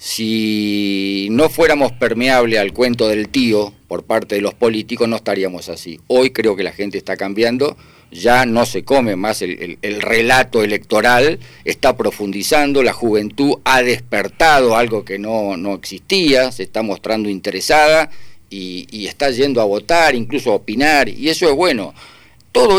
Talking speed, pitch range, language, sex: 165 wpm, 100-135 Hz, Spanish, male